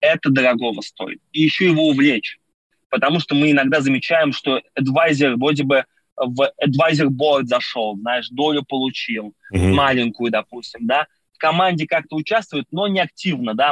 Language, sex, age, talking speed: Russian, male, 20-39, 140 wpm